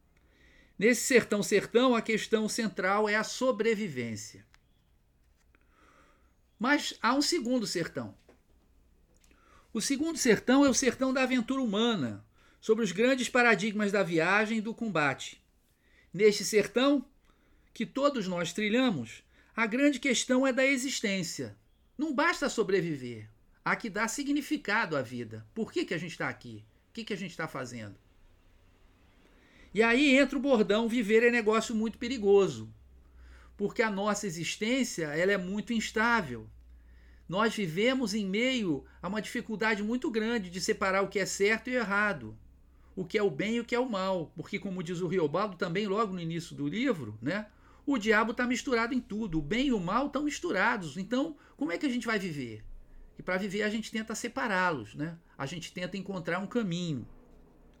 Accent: Brazilian